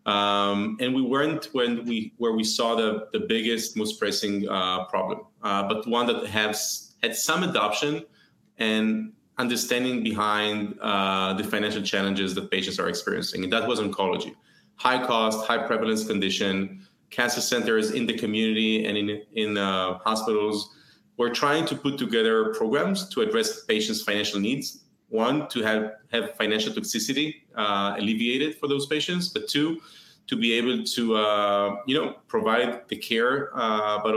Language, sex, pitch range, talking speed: English, male, 105-135 Hz, 160 wpm